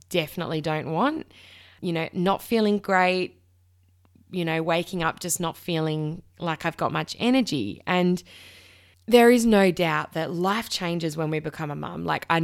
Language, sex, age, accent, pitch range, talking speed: English, female, 20-39, Australian, 150-185 Hz, 170 wpm